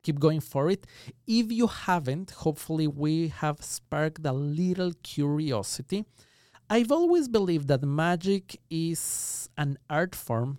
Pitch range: 125-155 Hz